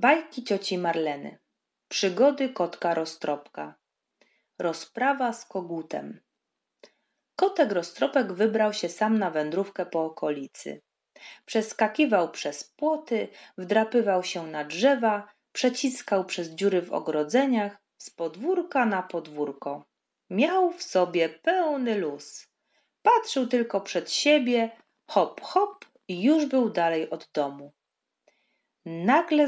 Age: 30-49